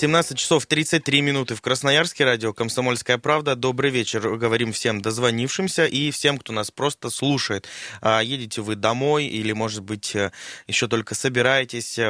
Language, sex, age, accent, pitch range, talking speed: Russian, male, 20-39, native, 110-135 Hz, 145 wpm